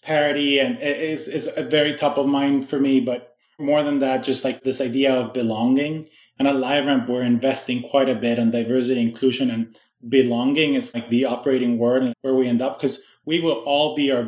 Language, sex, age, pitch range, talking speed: English, male, 20-39, 125-150 Hz, 210 wpm